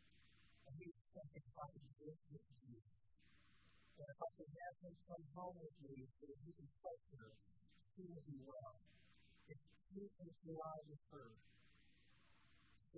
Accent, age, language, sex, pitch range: American, 50-69, English, female, 155-230 Hz